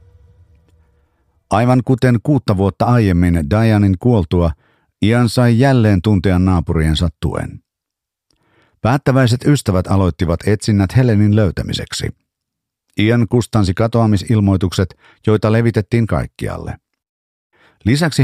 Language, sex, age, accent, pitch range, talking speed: Finnish, male, 50-69, native, 95-115 Hz, 85 wpm